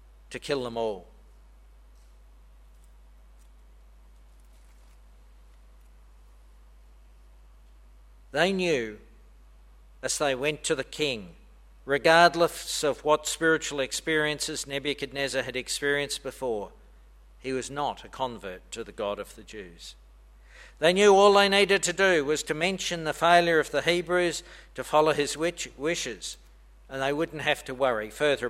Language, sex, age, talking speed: English, male, 60-79, 120 wpm